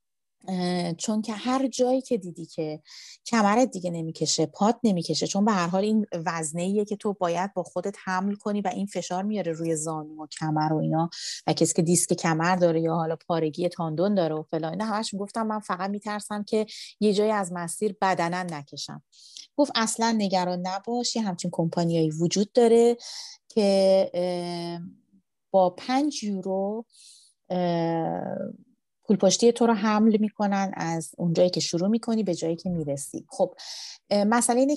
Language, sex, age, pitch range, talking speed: Persian, female, 30-49, 165-215 Hz, 155 wpm